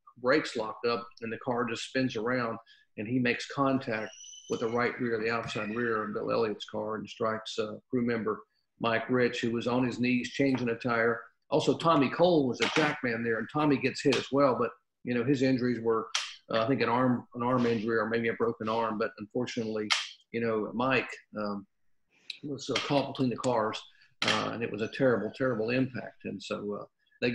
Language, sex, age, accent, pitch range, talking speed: English, male, 50-69, American, 110-130 Hz, 205 wpm